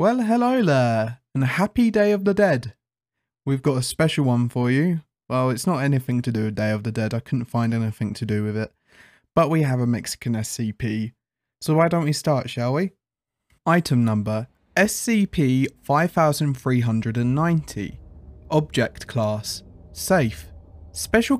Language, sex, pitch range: English, male, 115-165 Hz